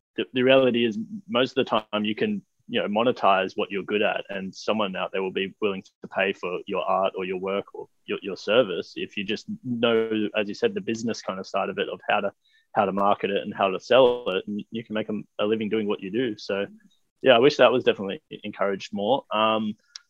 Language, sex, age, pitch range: English, male, 20-39, 100-130 Hz